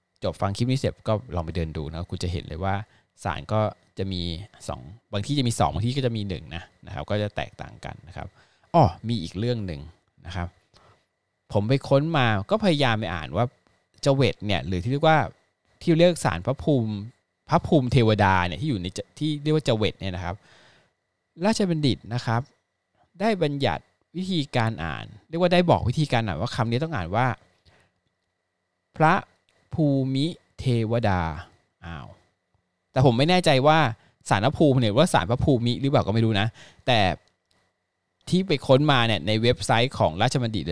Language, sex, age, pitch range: Thai, male, 20-39, 90-130 Hz